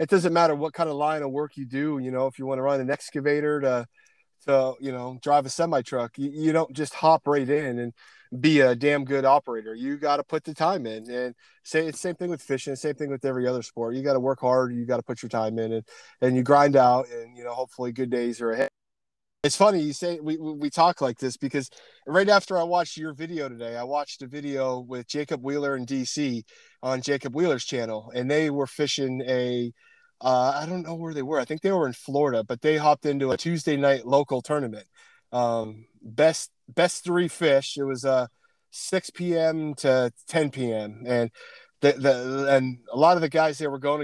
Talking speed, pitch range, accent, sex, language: 230 wpm, 125-155 Hz, American, male, English